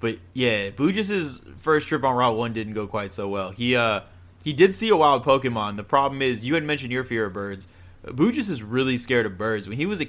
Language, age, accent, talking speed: English, 20-39, American, 245 wpm